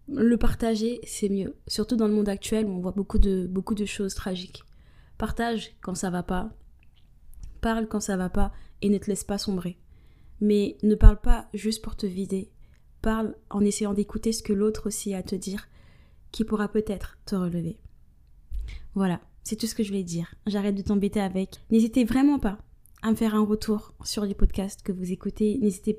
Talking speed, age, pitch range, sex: 200 wpm, 20-39, 195-220 Hz, female